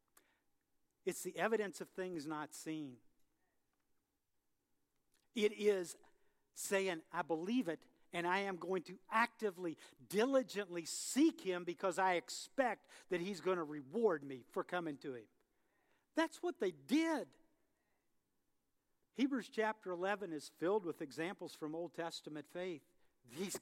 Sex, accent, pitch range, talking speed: male, American, 145-185 Hz, 130 wpm